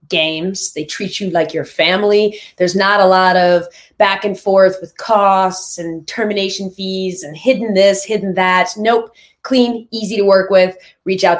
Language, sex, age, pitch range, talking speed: English, female, 20-39, 185-240 Hz, 175 wpm